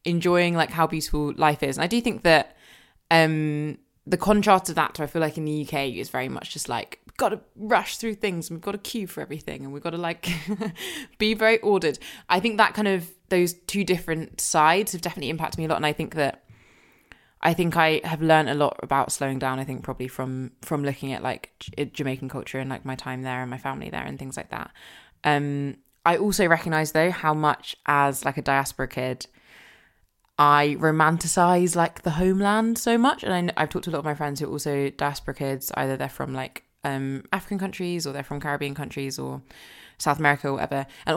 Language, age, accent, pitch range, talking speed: English, 20-39, British, 135-170 Hz, 225 wpm